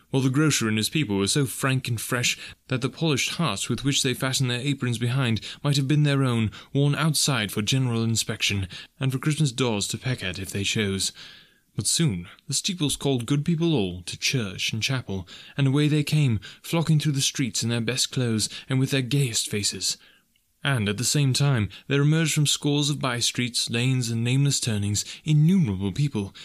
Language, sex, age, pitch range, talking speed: English, male, 20-39, 105-145 Hz, 200 wpm